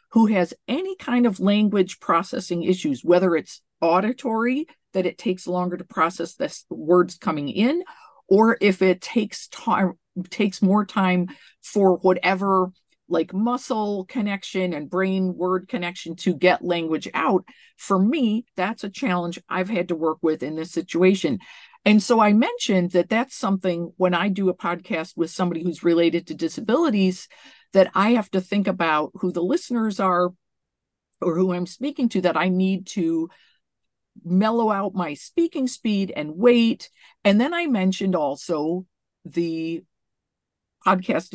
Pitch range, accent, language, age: 175-220 Hz, American, English, 50-69